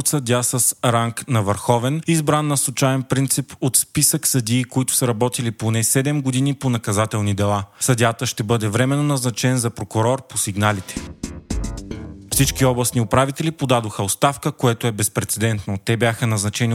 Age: 30-49